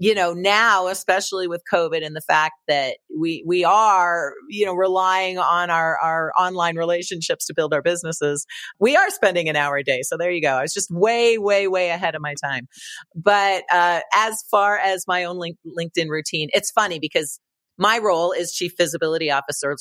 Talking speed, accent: 195 wpm, American